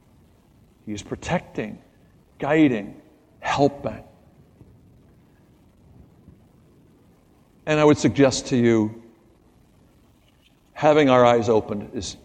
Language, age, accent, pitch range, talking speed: English, 60-79, American, 110-140 Hz, 80 wpm